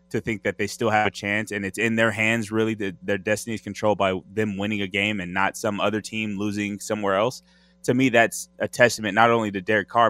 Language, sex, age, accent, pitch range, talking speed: English, male, 20-39, American, 100-120 Hz, 250 wpm